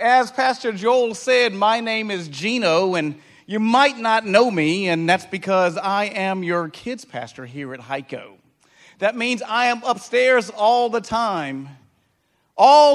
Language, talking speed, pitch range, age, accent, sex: English, 160 wpm, 130-190 Hz, 40-59, American, male